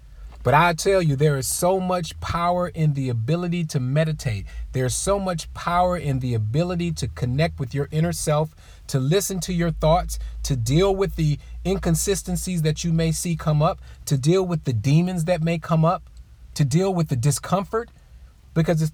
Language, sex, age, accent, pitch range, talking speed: English, male, 40-59, American, 130-175 Hz, 185 wpm